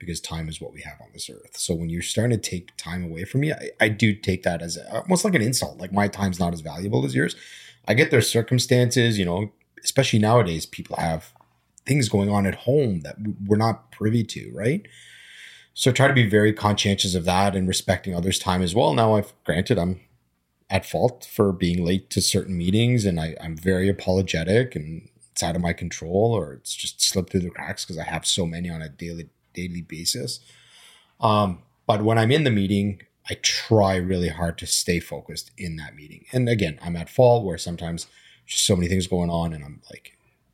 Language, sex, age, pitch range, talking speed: English, male, 30-49, 85-110 Hz, 215 wpm